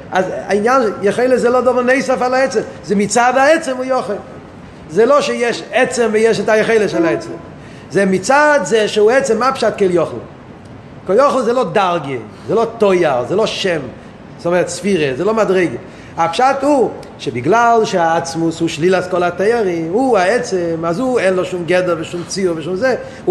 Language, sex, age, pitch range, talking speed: Hebrew, male, 30-49, 175-245 Hz, 180 wpm